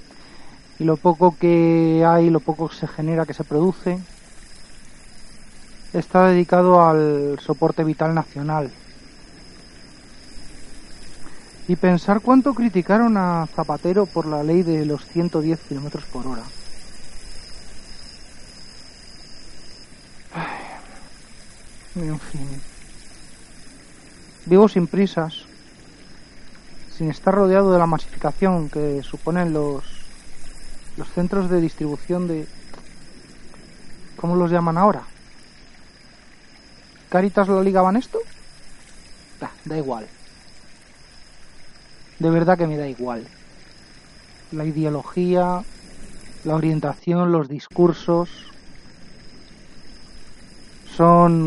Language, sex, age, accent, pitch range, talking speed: Spanish, male, 40-59, Spanish, 150-180 Hz, 90 wpm